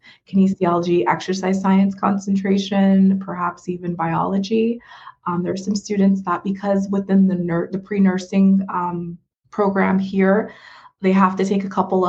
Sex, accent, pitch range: female, American, 175-195 Hz